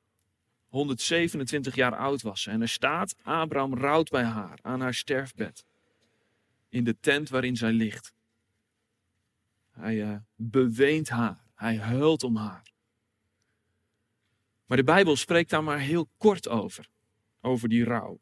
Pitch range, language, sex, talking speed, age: 110-150 Hz, Dutch, male, 135 wpm, 40-59